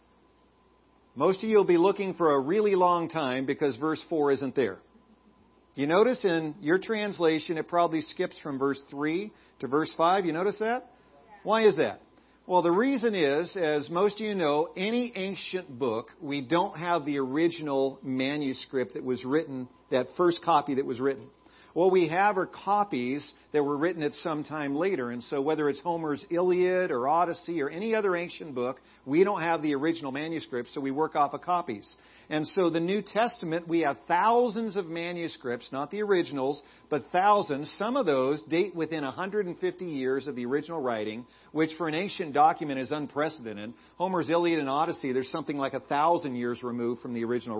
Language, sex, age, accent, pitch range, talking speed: English, male, 50-69, American, 135-180 Hz, 185 wpm